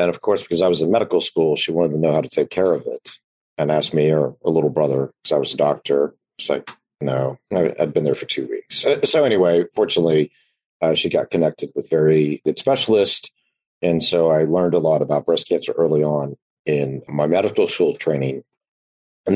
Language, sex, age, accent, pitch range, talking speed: English, male, 40-59, American, 75-85 Hz, 210 wpm